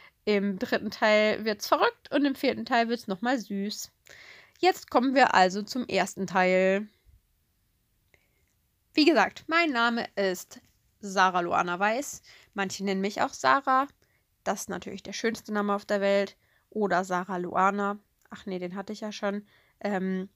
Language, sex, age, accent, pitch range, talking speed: German, female, 20-39, German, 195-235 Hz, 160 wpm